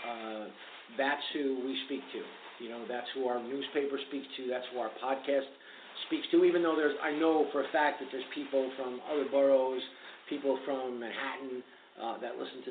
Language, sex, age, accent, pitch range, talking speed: English, male, 50-69, American, 120-145 Hz, 195 wpm